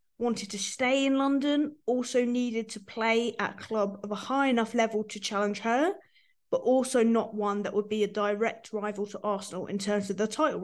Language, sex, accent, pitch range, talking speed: English, female, British, 205-245 Hz, 210 wpm